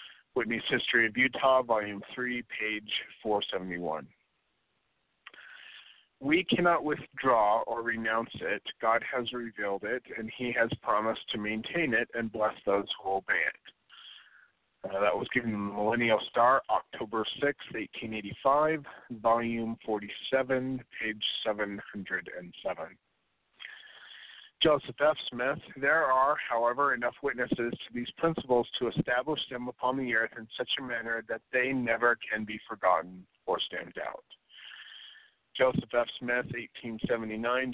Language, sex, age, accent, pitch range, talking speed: English, male, 40-59, American, 110-130 Hz, 125 wpm